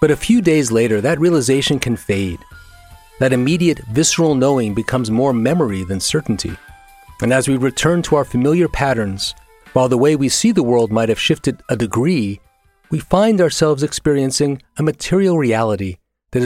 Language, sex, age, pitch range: English, male, 40-59, 105-155 Hz